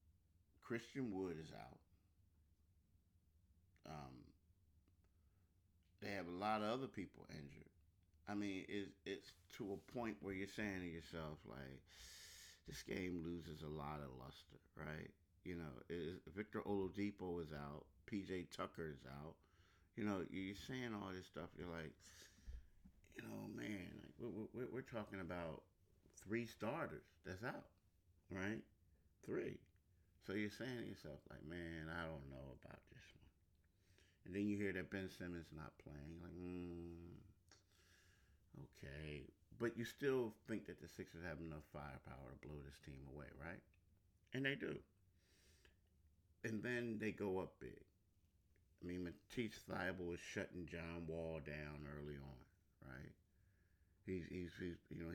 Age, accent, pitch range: 50-69, American, 80-95 Hz